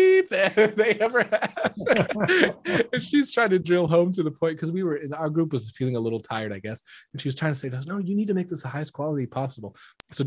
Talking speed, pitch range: 245 wpm, 115-145 Hz